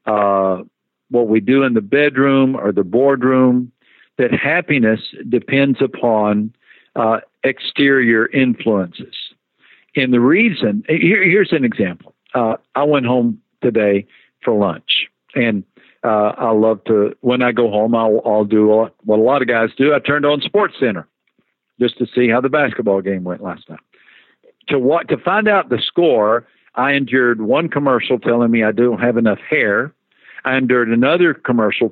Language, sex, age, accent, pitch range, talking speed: English, male, 60-79, American, 110-140 Hz, 160 wpm